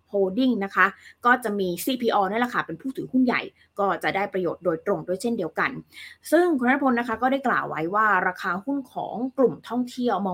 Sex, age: female, 20-39